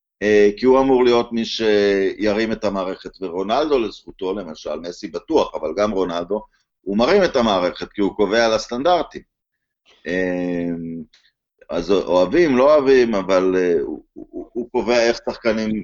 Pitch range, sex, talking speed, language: 100-135 Hz, male, 135 wpm, Hebrew